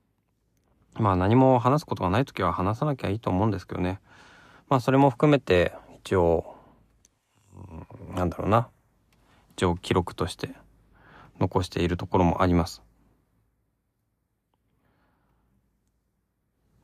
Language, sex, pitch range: Japanese, male, 90-115 Hz